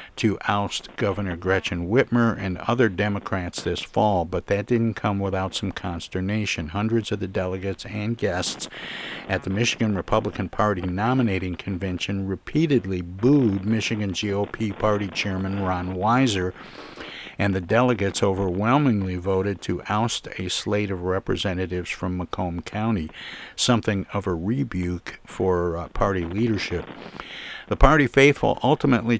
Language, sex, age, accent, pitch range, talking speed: English, male, 60-79, American, 90-110 Hz, 130 wpm